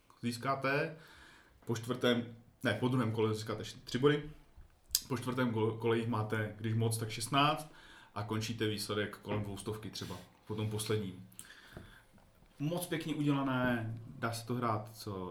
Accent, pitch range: native, 105-115 Hz